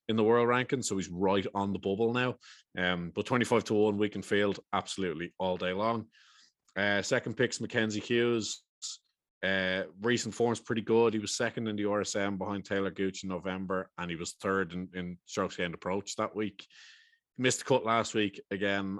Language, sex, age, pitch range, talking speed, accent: English, male, 20-39, 95-110 Hz, 195 wpm, Irish